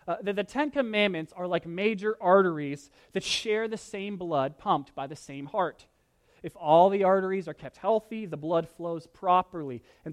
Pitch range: 145-215 Hz